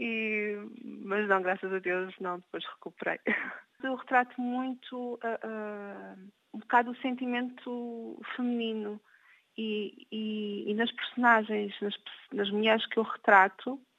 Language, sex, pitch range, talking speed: Portuguese, female, 205-245 Hz, 110 wpm